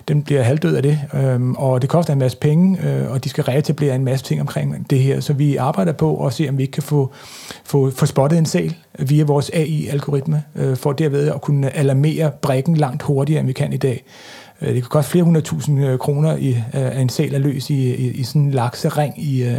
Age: 40-59